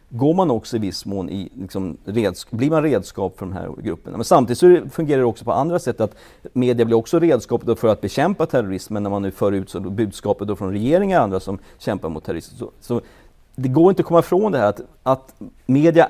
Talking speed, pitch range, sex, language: 225 wpm, 105-150 Hz, male, English